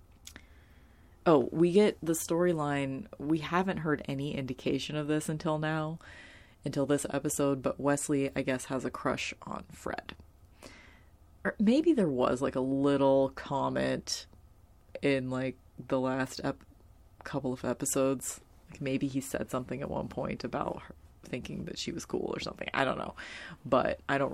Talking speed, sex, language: 160 wpm, female, English